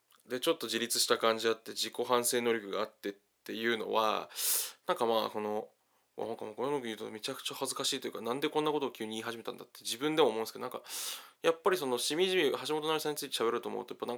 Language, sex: Japanese, male